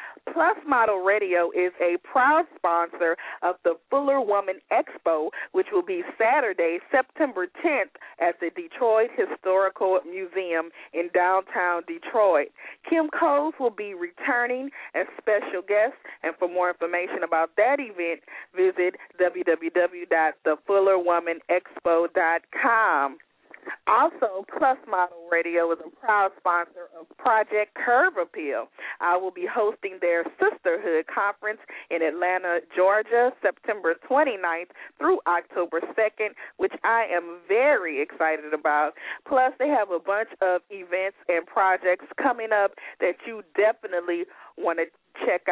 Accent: American